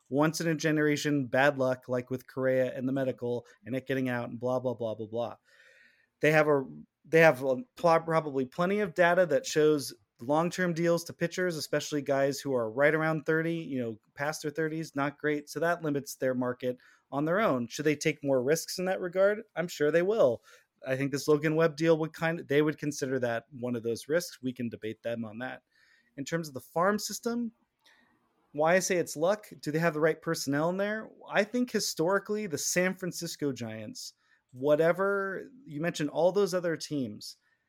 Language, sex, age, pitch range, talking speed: English, male, 30-49, 130-165 Hz, 205 wpm